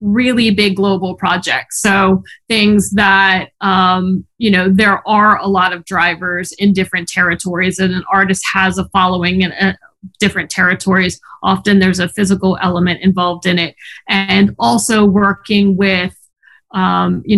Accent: American